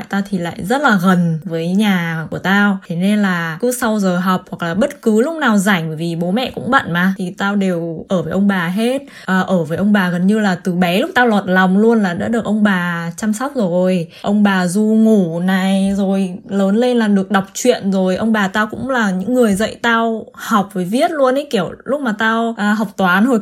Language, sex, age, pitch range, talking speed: Vietnamese, female, 10-29, 185-235 Hz, 240 wpm